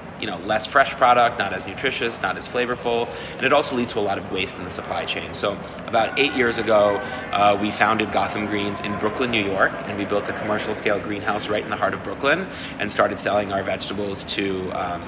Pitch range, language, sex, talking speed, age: 100-110 Hz, English, male, 225 wpm, 20-39